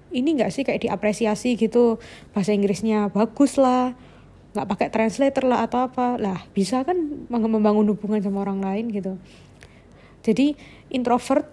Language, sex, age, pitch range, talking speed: Indonesian, female, 20-39, 215-255 Hz, 140 wpm